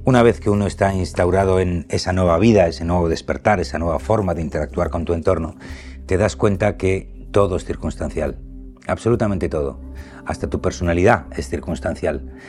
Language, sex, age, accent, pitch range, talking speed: Spanish, male, 60-79, Spanish, 80-100 Hz, 170 wpm